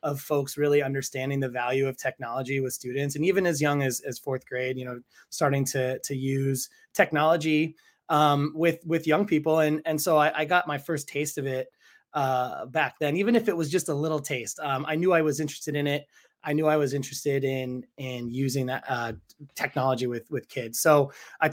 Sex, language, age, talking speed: male, English, 20-39, 210 wpm